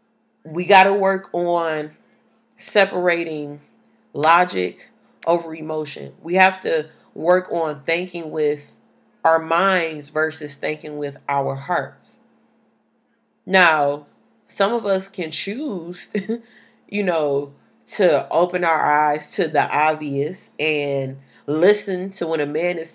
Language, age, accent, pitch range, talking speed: English, 30-49, American, 150-185 Hz, 120 wpm